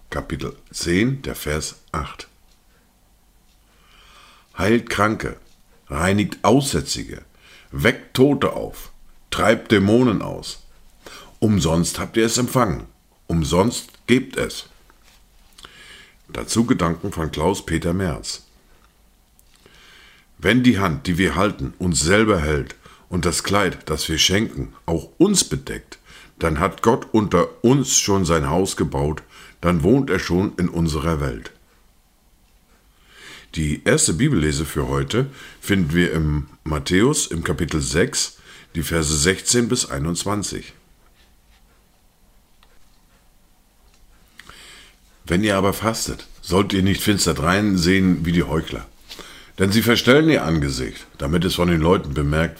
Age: 50-69